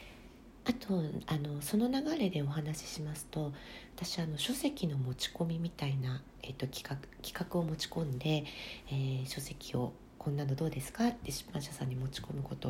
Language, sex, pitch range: Japanese, female, 140-190 Hz